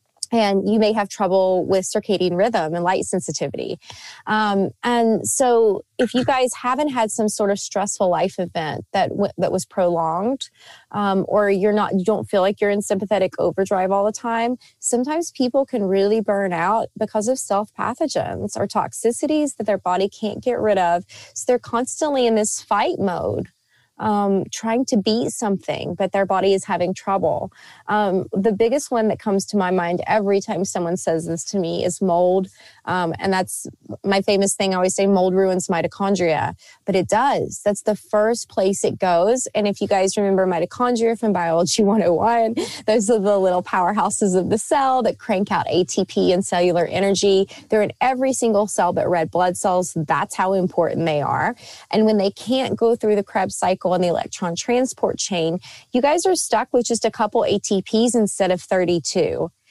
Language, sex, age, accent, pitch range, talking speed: English, female, 20-39, American, 185-225 Hz, 185 wpm